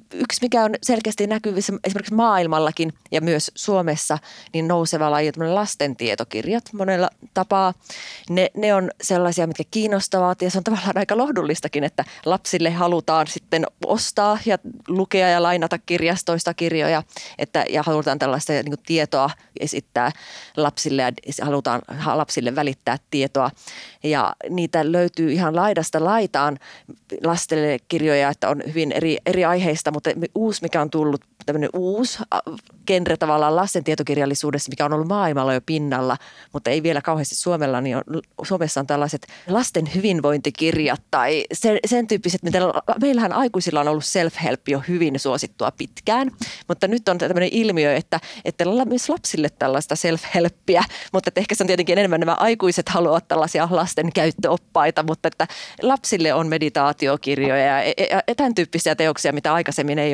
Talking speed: 150 wpm